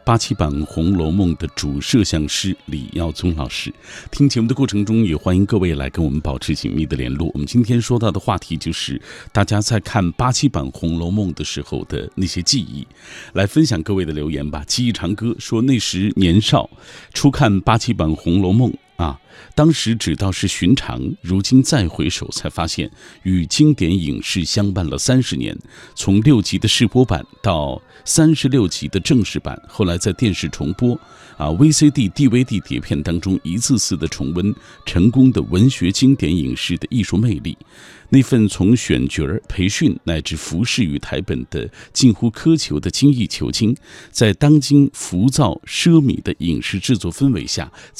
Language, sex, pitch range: Chinese, male, 85-125 Hz